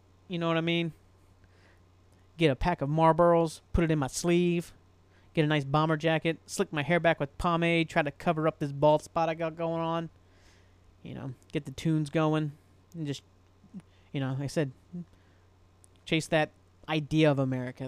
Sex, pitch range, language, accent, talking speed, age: male, 130-160 Hz, English, American, 185 wpm, 30-49